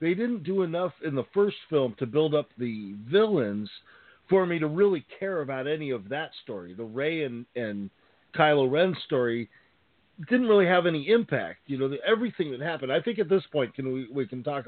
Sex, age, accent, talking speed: male, 50-69, American, 210 wpm